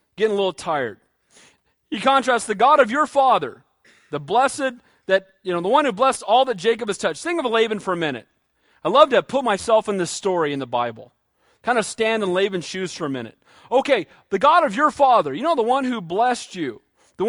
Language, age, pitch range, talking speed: English, 40-59, 210-275 Hz, 225 wpm